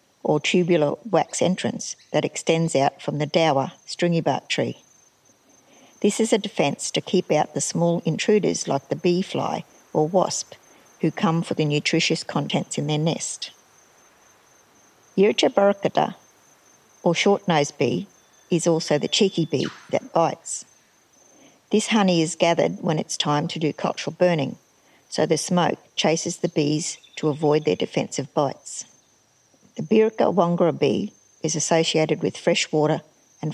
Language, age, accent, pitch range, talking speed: English, 50-69, Australian, 155-185 Hz, 145 wpm